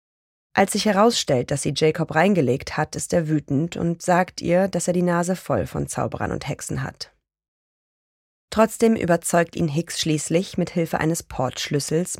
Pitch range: 140-180 Hz